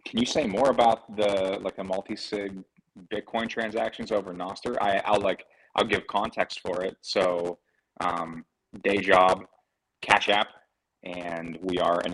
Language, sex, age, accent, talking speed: English, male, 30-49, American, 155 wpm